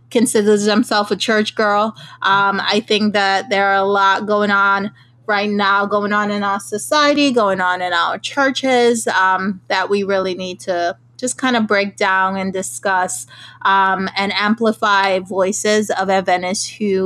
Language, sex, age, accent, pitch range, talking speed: English, female, 20-39, American, 190-220 Hz, 165 wpm